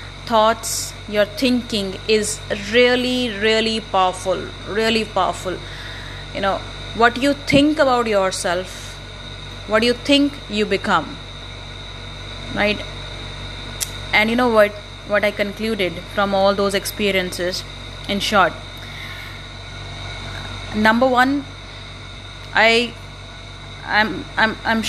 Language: Hindi